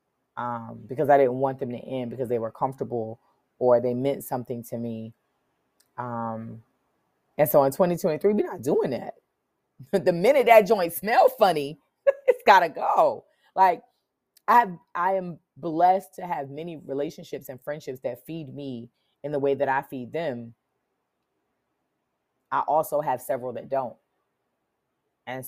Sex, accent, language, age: female, American, English, 20-39